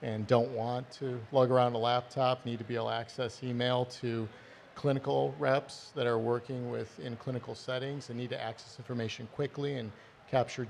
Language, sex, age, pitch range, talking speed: Italian, male, 50-69, 115-130 Hz, 180 wpm